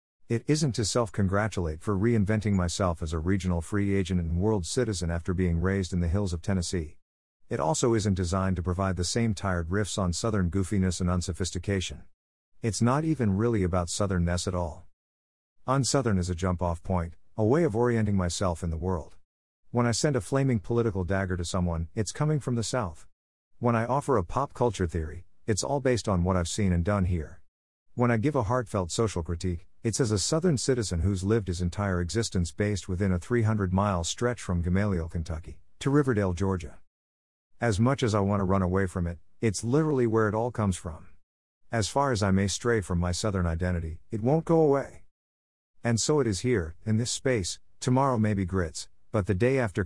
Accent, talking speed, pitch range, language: American, 200 wpm, 85-115 Hz, English